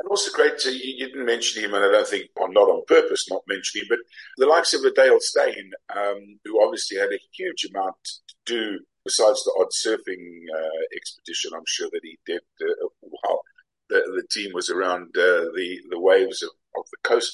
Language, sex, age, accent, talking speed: English, male, 50-69, British, 215 wpm